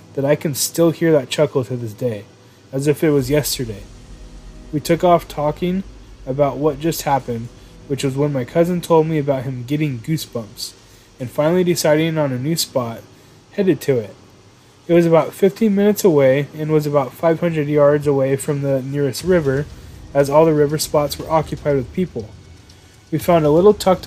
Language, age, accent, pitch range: English, 20-39, American, 125-160 Hz